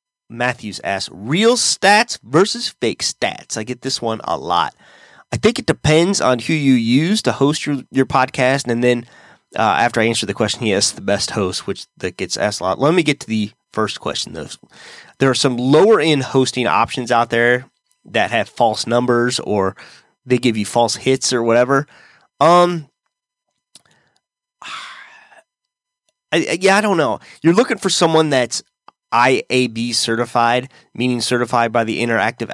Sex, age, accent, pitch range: male, 30-49, American, 115-155 Hz